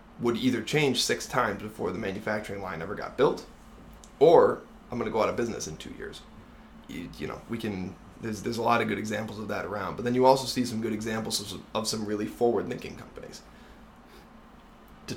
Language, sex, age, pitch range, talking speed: English, male, 20-39, 105-130 Hz, 210 wpm